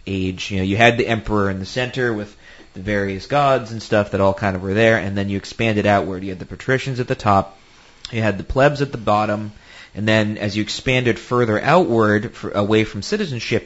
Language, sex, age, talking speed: English, male, 30-49, 230 wpm